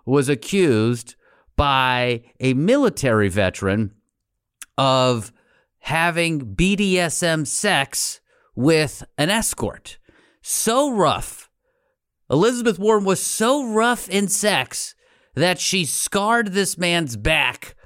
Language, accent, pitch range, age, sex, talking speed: English, American, 115-175 Hz, 30-49, male, 95 wpm